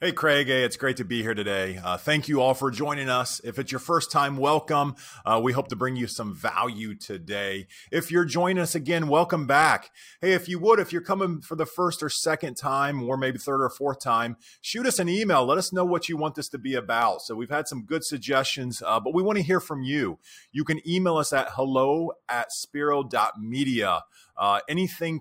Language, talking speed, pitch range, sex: English, 220 wpm, 115-155 Hz, male